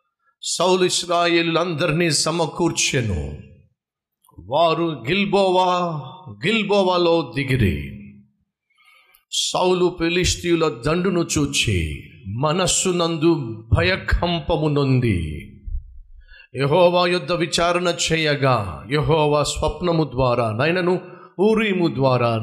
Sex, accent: male, native